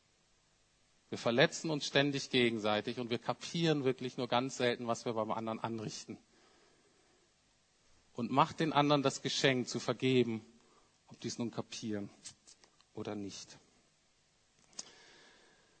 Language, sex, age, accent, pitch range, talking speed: German, male, 50-69, German, 115-140 Hz, 120 wpm